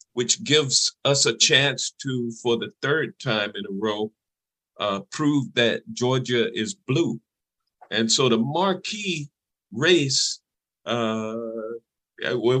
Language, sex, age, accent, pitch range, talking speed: English, male, 50-69, American, 115-145 Hz, 120 wpm